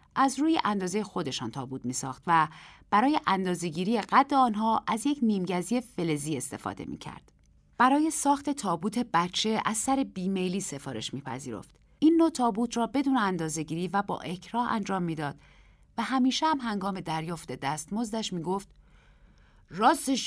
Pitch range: 180-250 Hz